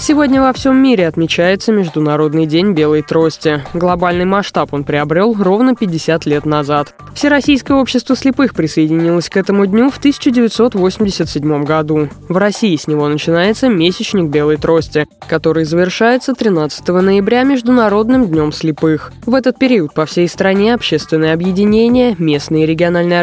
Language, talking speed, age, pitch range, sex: Russian, 135 wpm, 20-39, 160-245 Hz, female